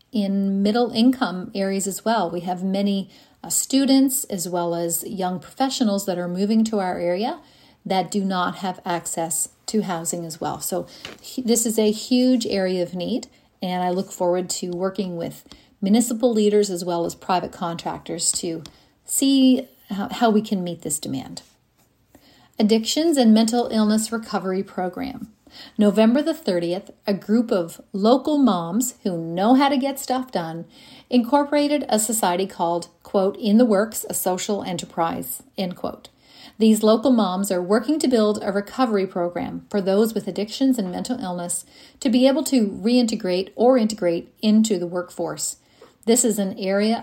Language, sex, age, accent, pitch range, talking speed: English, female, 40-59, American, 185-240 Hz, 160 wpm